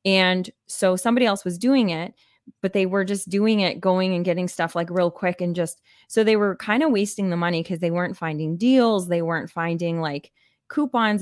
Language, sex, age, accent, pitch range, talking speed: English, female, 20-39, American, 170-205 Hz, 215 wpm